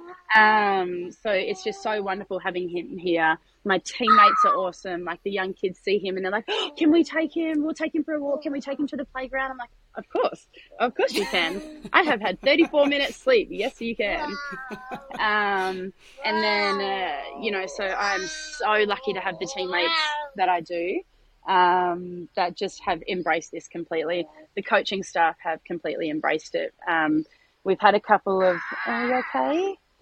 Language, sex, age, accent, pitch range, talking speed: English, female, 20-39, Australian, 170-255 Hz, 195 wpm